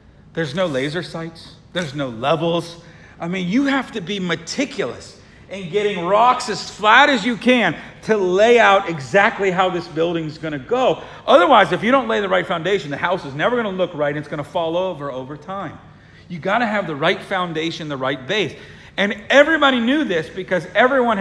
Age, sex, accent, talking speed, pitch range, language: 40-59, male, American, 190 wpm, 150-200 Hz, English